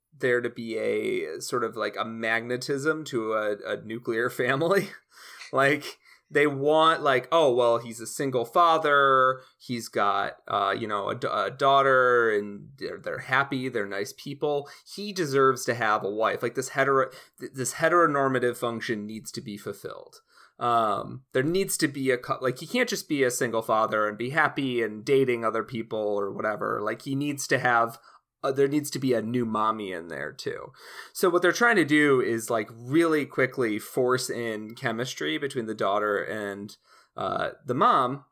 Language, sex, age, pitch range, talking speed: English, male, 30-49, 115-155 Hz, 180 wpm